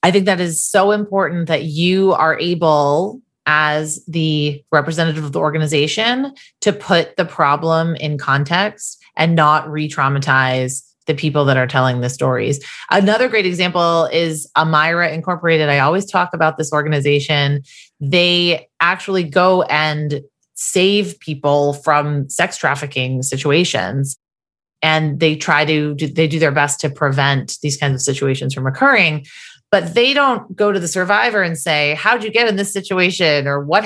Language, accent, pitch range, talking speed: English, American, 145-185 Hz, 160 wpm